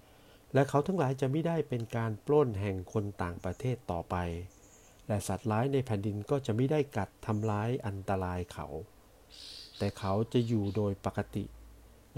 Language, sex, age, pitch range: Thai, male, 60-79, 100-120 Hz